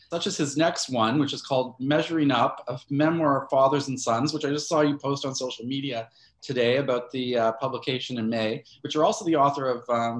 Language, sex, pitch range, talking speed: English, male, 125-150 Hz, 230 wpm